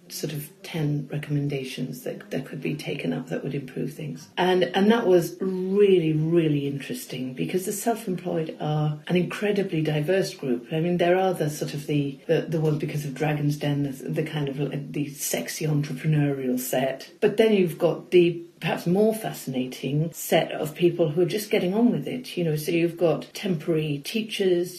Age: 40-59